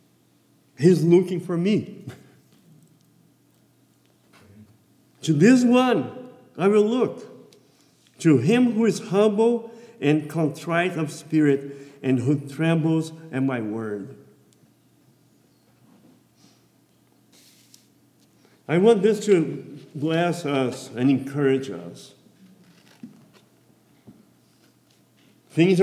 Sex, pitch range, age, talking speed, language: male, 145-200 Hz, 50-69, 80 wpm, English